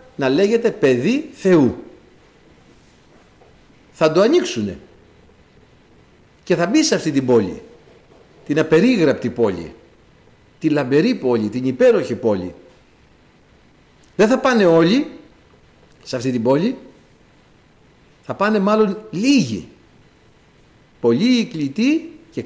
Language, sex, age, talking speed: Greek, male, 60-79, 100 wpm